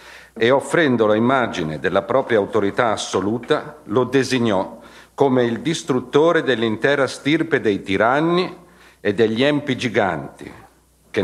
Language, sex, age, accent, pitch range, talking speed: Italian, male, 50-69, native, 105-150 Hz, 110 wpm